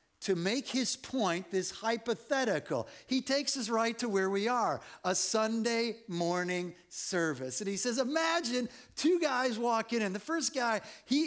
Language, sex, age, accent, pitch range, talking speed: English, male, 50-69, American, 140-225 Hz, 160 wpm